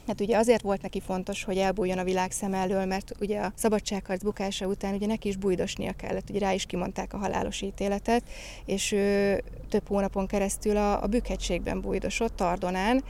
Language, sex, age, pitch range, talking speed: Hungarian, female, 20-39, 185-205 Hz, 185 wpm